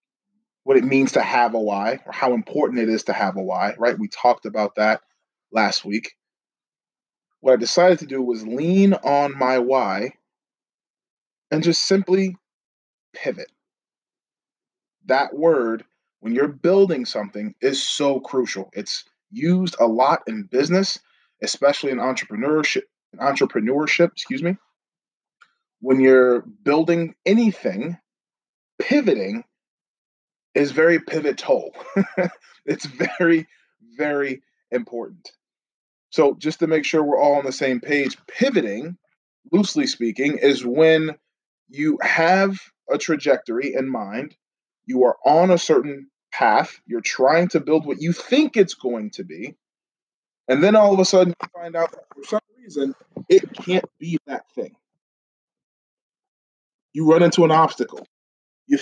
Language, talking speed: English, 135 wpm